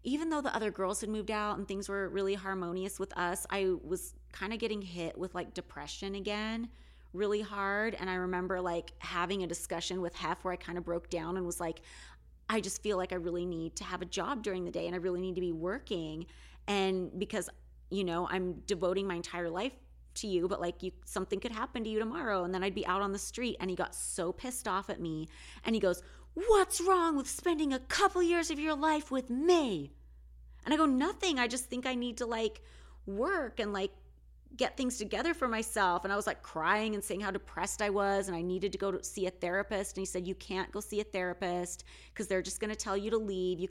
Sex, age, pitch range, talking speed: female, 30-49, 175-215 Hz, 240 wpm